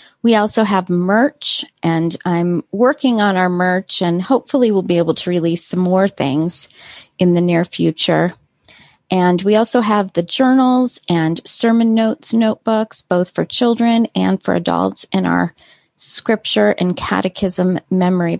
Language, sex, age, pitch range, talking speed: English, female, 40-59, 175-220 Hz, 150 wpm